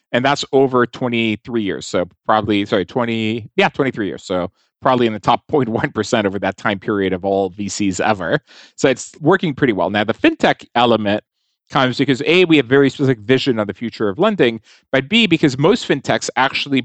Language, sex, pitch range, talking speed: English, male, 105-140 Hz, 190 wpm